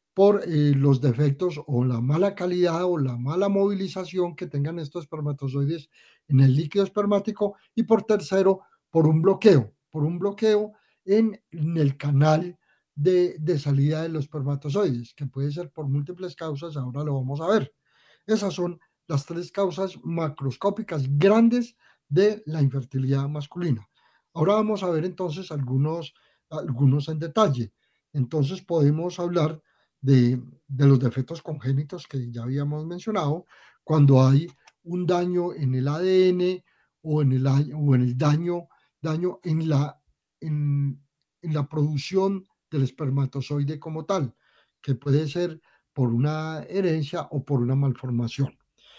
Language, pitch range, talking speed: Spanish, 140-180 Hz, 145 wpm